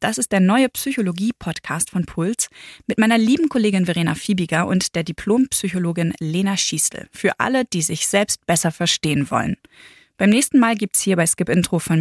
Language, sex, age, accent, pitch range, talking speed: German, female, 20-39, German, 175-230 Hz, 180 wpm